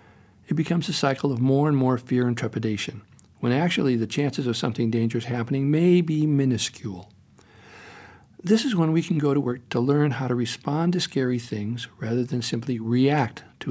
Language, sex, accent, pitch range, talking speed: English, male, American, 115-150 Hz, 190 wpm